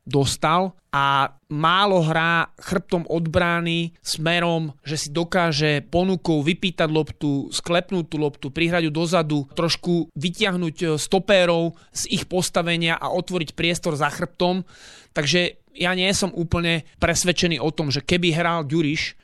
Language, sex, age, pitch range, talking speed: Slovak, male, 30-49, 150-175 Hz, 125 wpm